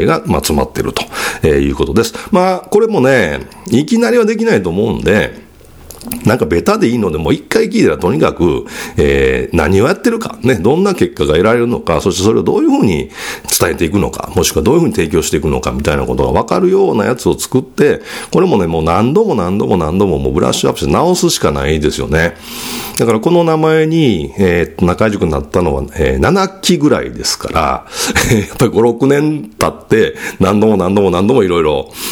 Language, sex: Japanese, male